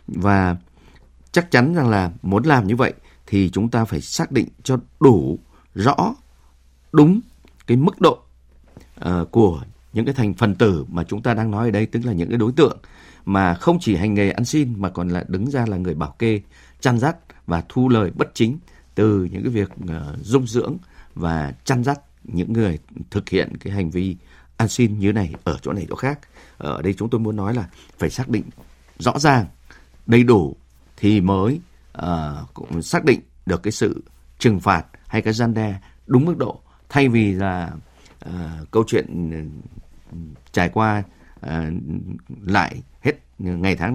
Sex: male